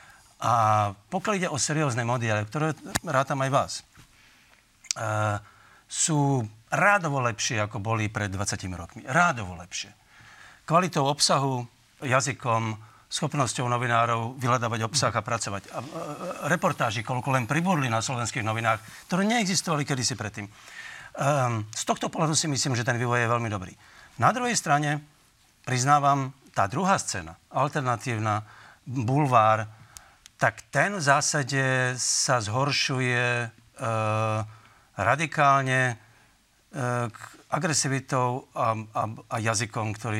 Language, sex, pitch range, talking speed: Slovak, male, 110-145 Hz, 115 wpm